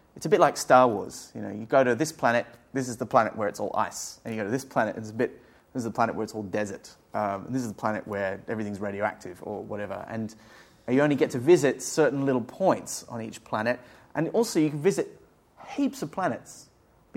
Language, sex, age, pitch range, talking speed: English, male, 30-49, 105-140 Hz, 245 wpm